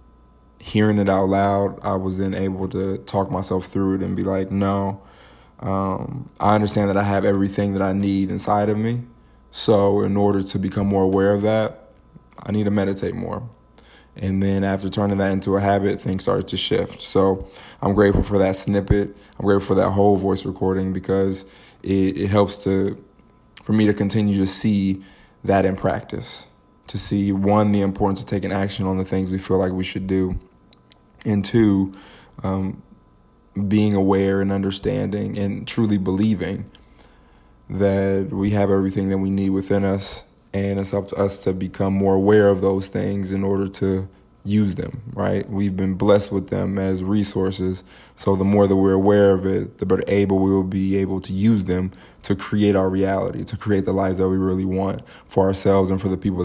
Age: 20-39